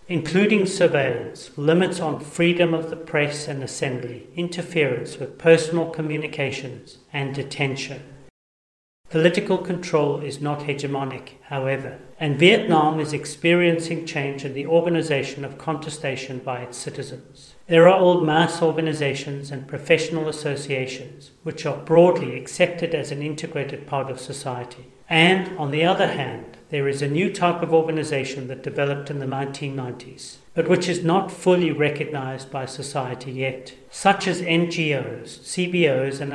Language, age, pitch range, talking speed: English, 40-59, 135-165 Hz, 140 wpm